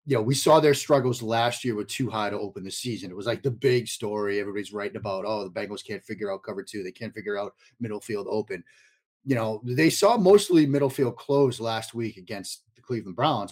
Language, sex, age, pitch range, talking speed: English, male, 30-49, 110-135 Hz, 235 wpm